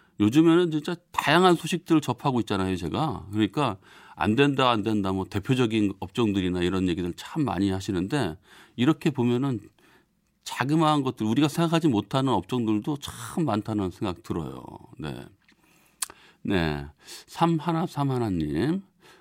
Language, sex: Korean, male